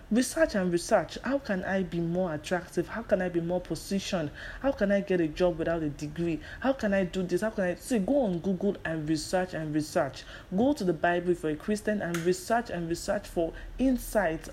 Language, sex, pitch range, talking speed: English, male, 175-220 Hz, 220 wpm